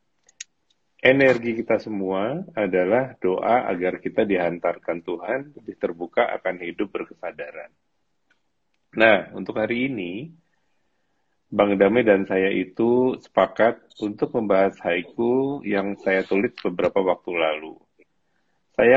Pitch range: 90-115 Hz